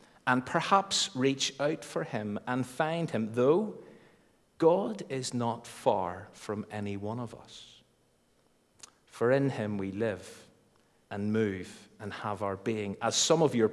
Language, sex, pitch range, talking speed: English, male, 100-140 Hz, 150 wpm